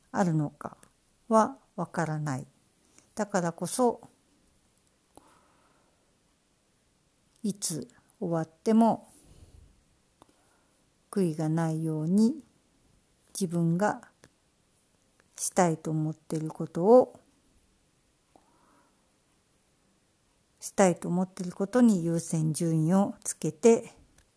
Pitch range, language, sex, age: 160-195 Hz, Japanese, female, 60-79